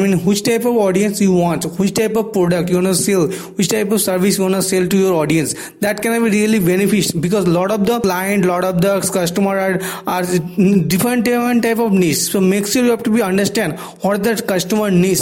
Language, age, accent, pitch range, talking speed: English, 20-39, Indian, 185-225 Hz, 235 wpm